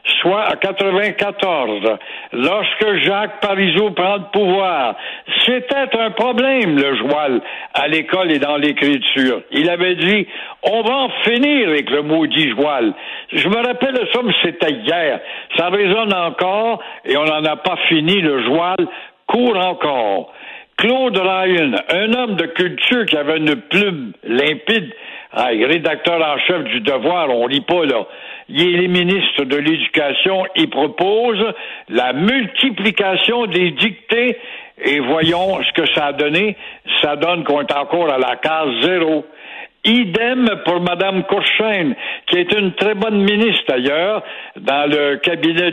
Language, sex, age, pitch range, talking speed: French, male, 60-79, 160-215 Hz, 145 wpm